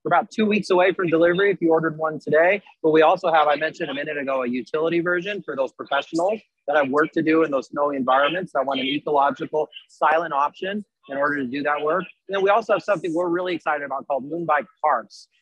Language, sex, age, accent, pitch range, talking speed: English, male, 30-49, American, 150-185 Hz, 235 wpm